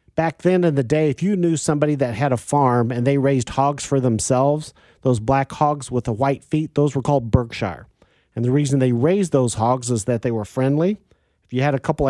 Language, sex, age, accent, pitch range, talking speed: English, male, 40-59, American, 120-145 Hz, 235 wpm